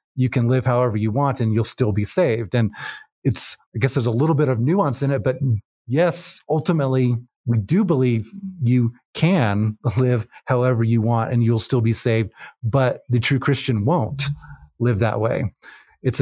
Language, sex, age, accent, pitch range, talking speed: English, male, 30-49, American, 115-135 Hz, 180 wpm